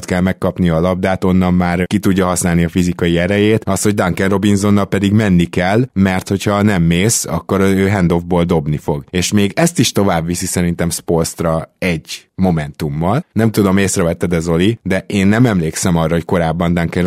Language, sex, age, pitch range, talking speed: Hungarian, male, 20-39, 85-105 Hz, 180 wpm